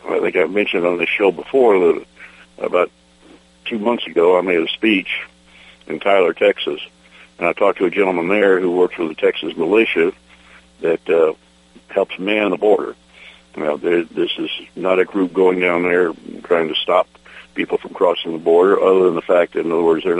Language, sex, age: English, male, 60-79